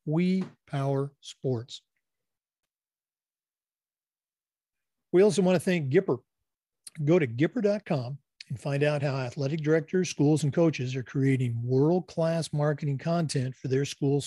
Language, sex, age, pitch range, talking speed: English, male, 50-69, 135-170 Hz, 120 wpm